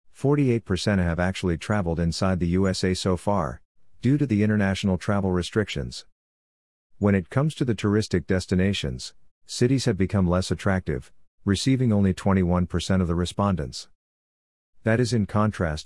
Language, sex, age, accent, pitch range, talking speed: English, male, 50-69, American, 85-100 Hz, 135 wpm